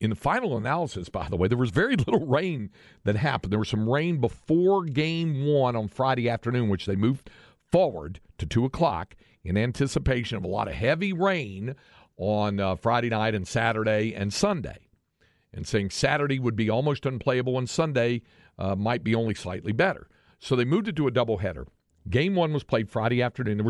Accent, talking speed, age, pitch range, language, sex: American, 190 wpm, 50-69, 95-130 Hz, English, male